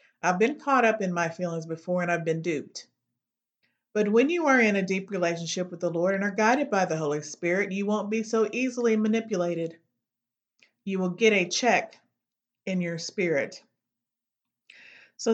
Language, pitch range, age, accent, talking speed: English, 170-215 Hz, 50-69, American, 175 wpm